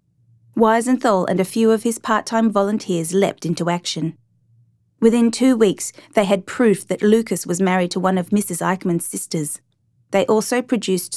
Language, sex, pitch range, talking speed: English, female, 160-210 Hz, 160 wpm